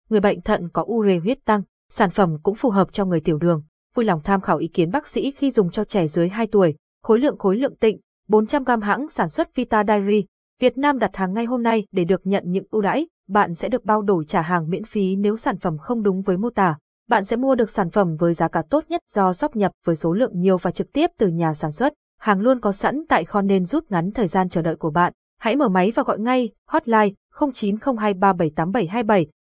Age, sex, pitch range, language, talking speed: 20-39, female, 185-240 Hz, Vietnamese, 245 wpm